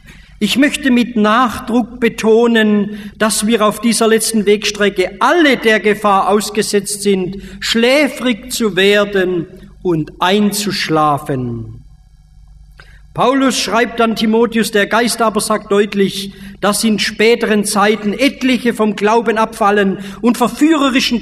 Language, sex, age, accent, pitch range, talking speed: German, male, 50-69, German, 180-230 Hz, 115 wpm